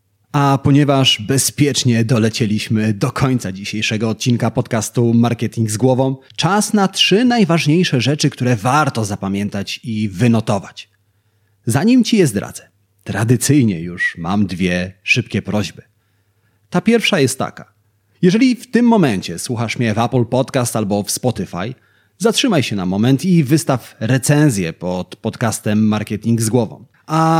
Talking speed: 135 wpm